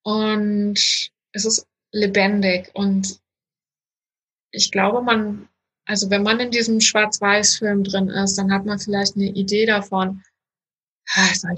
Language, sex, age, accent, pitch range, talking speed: German, female, 20-39, German, 195-215 Hz, 125 wpm